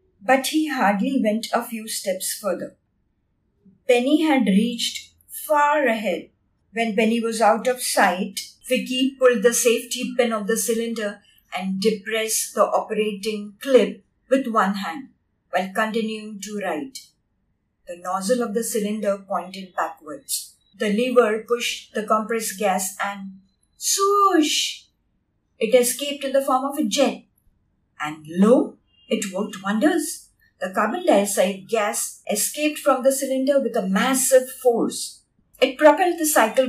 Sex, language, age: female, English, 50-69